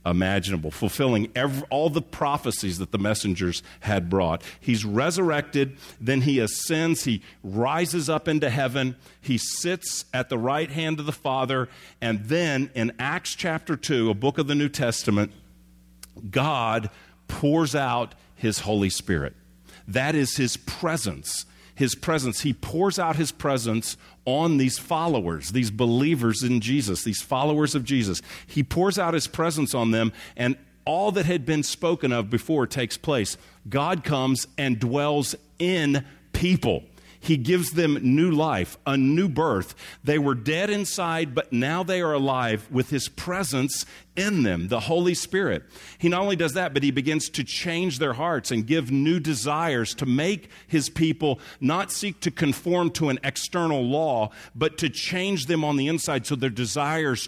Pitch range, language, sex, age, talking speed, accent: 115-160 Hz, English, male, 40-59, 165 wpm, American